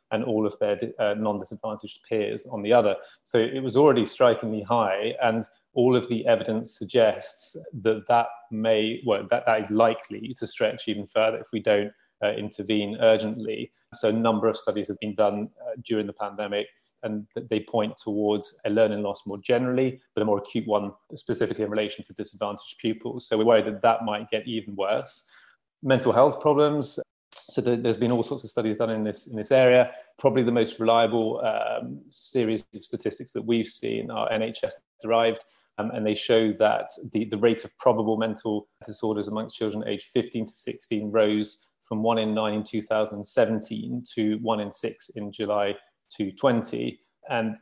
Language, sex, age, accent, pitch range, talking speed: English, male, 30-49, British, 105-115 Hz, 180 wpm